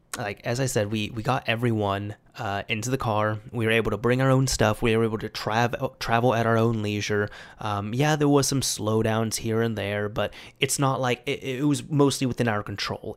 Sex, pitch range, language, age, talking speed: male, 105-135 Hz, English, 30-49, 225 wpm